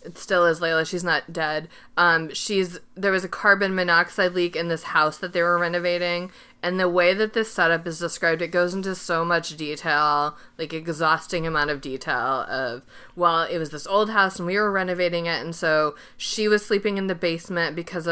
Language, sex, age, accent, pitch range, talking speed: English, female, 20-39, American, 155-180 Hz, 205 wpm